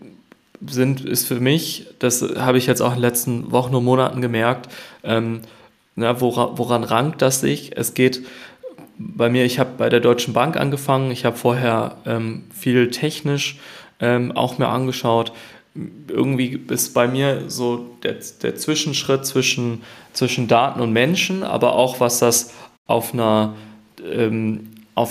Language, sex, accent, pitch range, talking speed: German, male, German, 115-130 Hz, 145 wpm